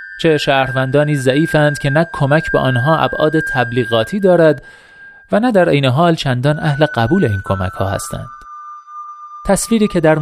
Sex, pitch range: male, 120-165 Hz